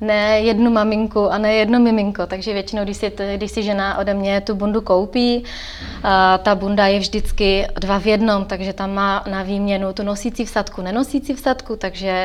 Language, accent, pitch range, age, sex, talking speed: Czech, native, 195-210 Hz, 20-39, female, 185 wpm